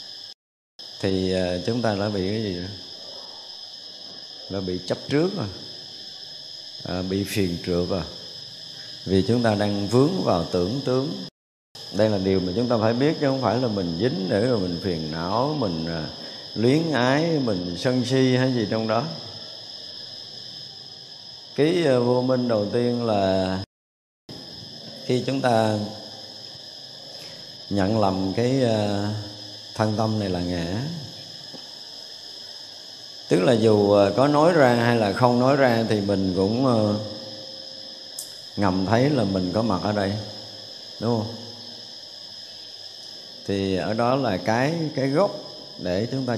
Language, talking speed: Vietnamese, 140 wpm